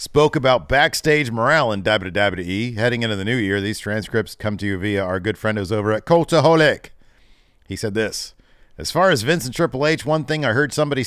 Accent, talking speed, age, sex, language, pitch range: American, 210 wpm, 40-59, male, English, 100-130 Hz